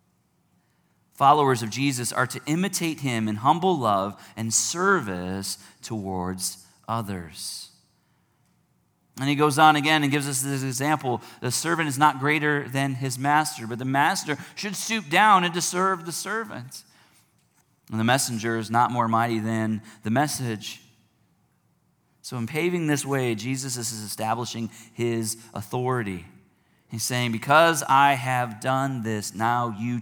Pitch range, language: 110-150 Hz, English